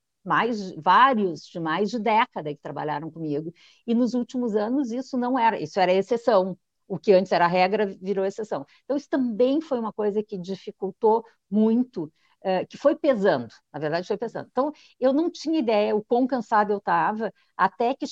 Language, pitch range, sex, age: Portuguese, 185-240 Hz, female, 50-69